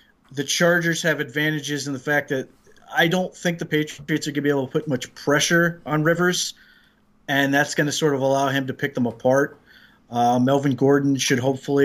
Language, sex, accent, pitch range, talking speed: English, male, American, 130-150 Hz, 210 wpm